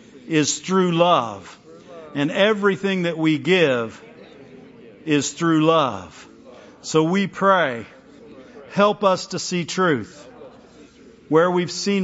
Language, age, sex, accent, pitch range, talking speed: English, 50-69, male, American, 150-205 Hz, 110 wpm